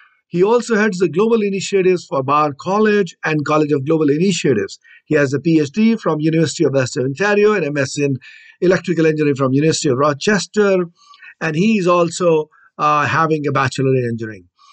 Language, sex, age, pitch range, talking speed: English, male, 50-69, 150-200 Hz, 170 wpm